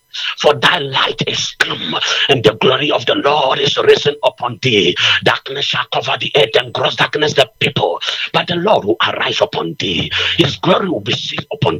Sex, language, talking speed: male, English, 195 wpm